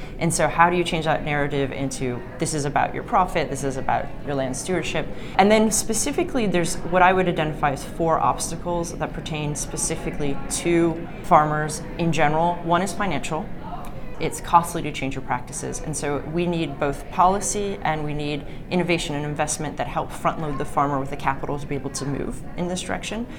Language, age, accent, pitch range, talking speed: English, 30-49, American, 145-170 Hz, 195 wpm